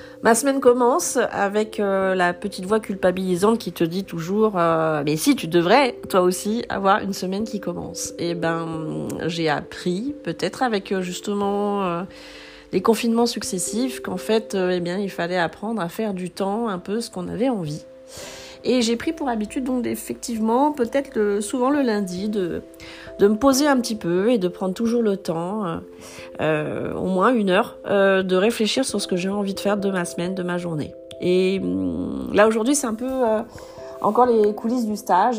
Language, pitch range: French, 175-220 Hz